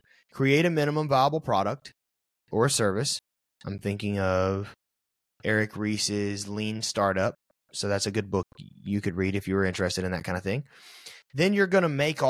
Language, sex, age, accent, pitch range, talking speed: English, male, 20-39, American, 100-145 Hz, 175 wpm